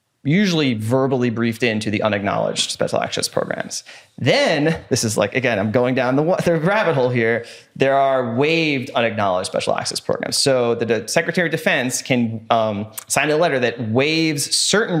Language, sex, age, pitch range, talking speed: English, male, 30-49, 115-150 Hz, 170 wpm